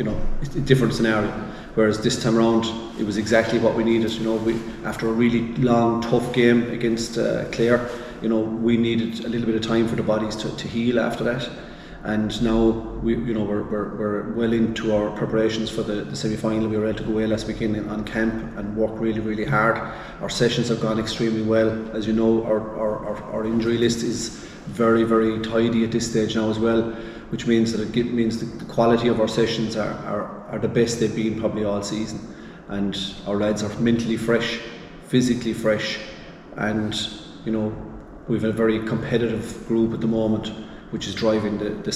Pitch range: 110-115 Hz